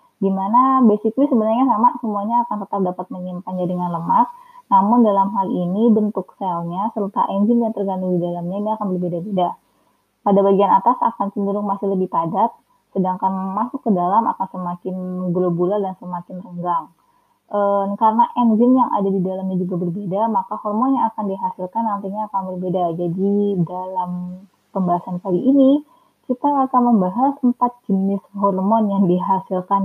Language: Indonesian